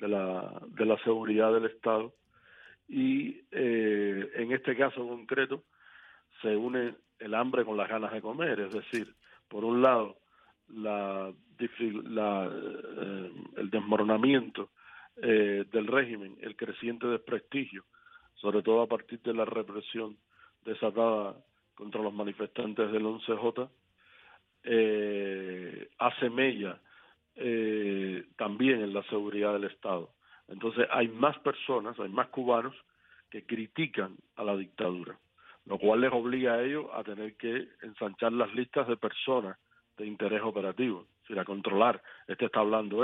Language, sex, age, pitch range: Spanish, male, 50-69, 105-120 Hz